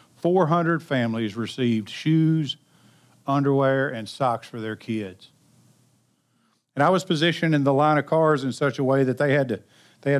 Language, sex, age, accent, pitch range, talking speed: English, male, 50-69, American, 130-160 Hz, 160 wpm